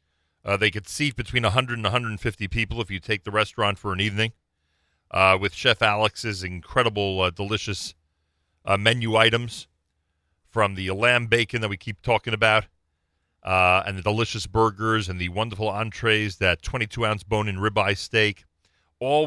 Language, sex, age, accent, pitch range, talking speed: English, male, 40-59, American, 90-110 Hz, 155 wpm